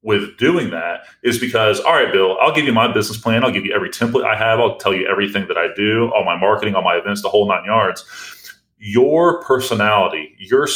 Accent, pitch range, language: American, 100-170 Hz, English